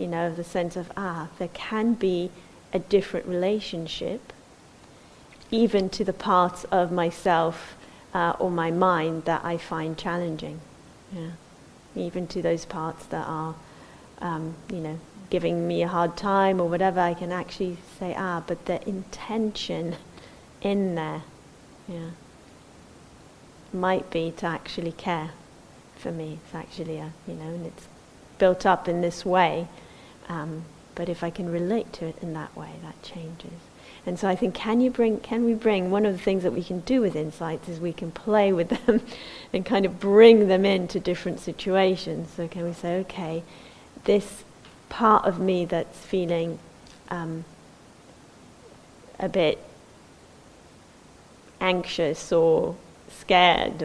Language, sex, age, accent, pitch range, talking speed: English, female, 30-49, British, 165-190 Hz, 150 wpm